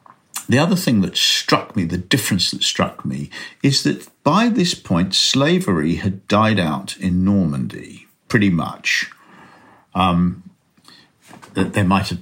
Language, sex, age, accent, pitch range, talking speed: English, male, 50-69, British, 95-140 Hz, 140 wpm